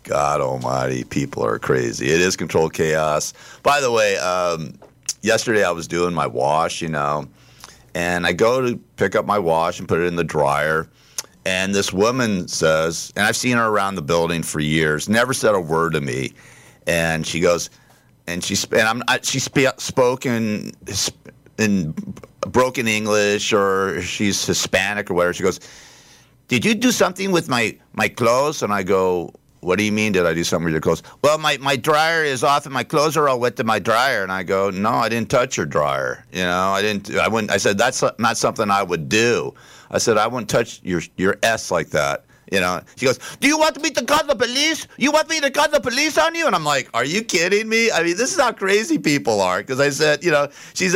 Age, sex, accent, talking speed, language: 50-69, male, American, 215 wpm, English